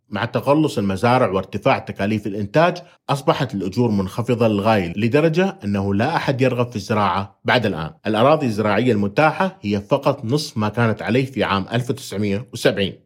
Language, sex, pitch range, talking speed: Arabic, male, 100-140 Hz, 140 wpm